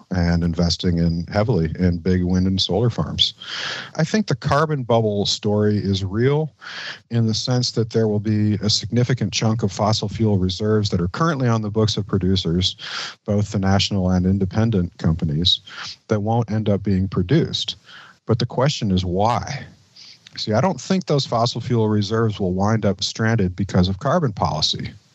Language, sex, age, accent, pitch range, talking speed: English, male, 50-69, American, 95-115 Hz, 175 wpm